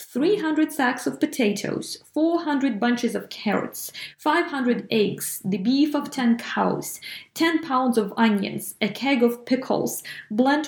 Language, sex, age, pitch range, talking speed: English, female, 20-39, 210-260 Hz, 135 wpm